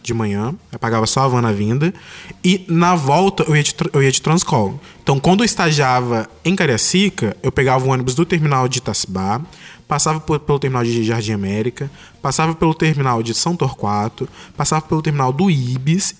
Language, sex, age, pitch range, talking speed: Portuguese, male, 20-39, 125-165 Hz, 195 wpm